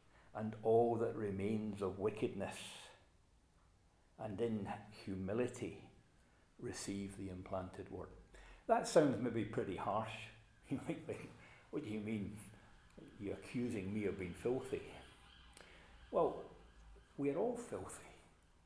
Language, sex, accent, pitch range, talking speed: English, male, British, 85-110 Hz, 115 wpm